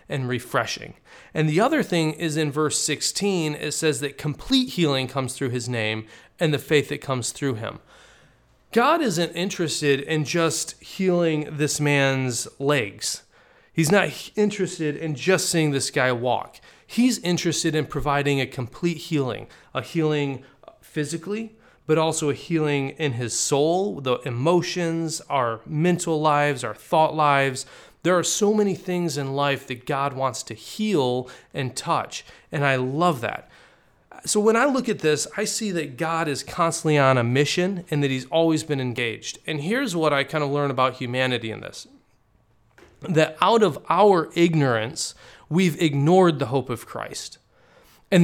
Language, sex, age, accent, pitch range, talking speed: Polish, male, 30-49, American, 135-170 Hz, 165 wpm